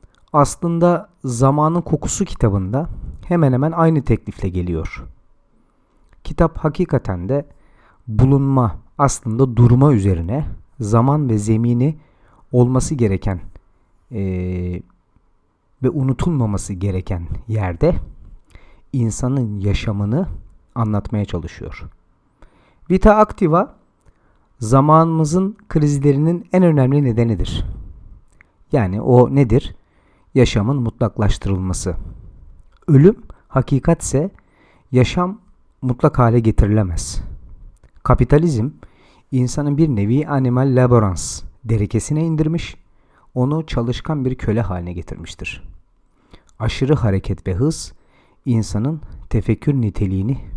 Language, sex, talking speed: Turkish, male, 85 wpm